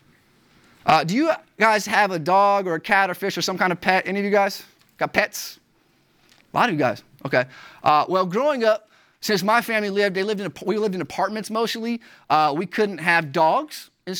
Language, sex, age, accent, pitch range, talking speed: English, male, 20-39, American, 170-210 Hz, 220 wpm